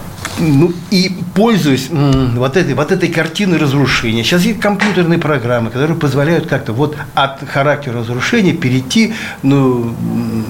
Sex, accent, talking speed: male, native, 150 wpm